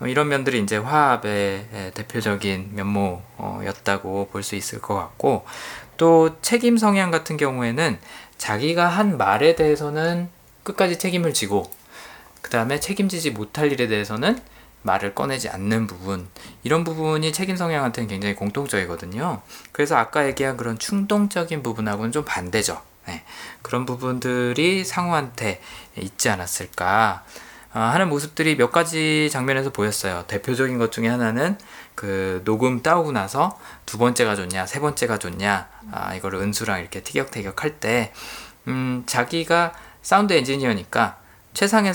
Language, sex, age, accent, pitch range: Korean, male, 20-39, native, 100-155 Hz